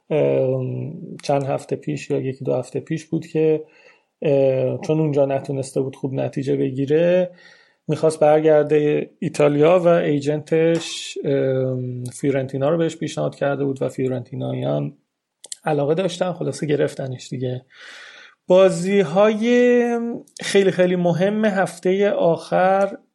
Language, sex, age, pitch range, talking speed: Persian, male, 30-49, 140-185 Hz, 110 wpm